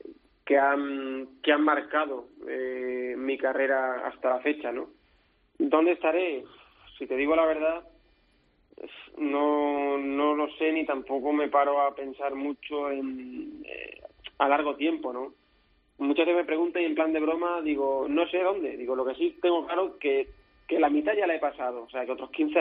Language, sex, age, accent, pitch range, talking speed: Spanish, male, 20-39, Spanish, 135-155 Hz, 185 wpm